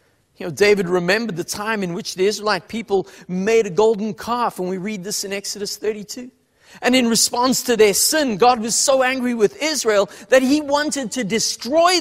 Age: 40-59